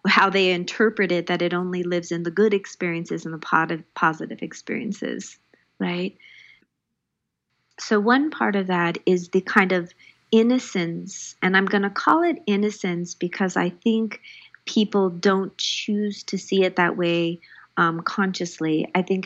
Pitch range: 175-205 Hz